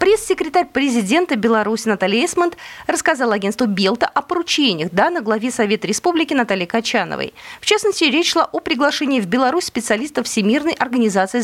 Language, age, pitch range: Russian, 20-39, 210-325 Hz